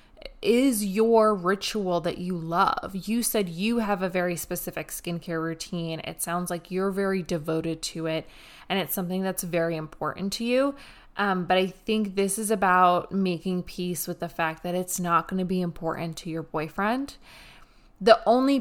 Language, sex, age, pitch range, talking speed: English, female, 20-39, 175-220 Hz, 175 wpm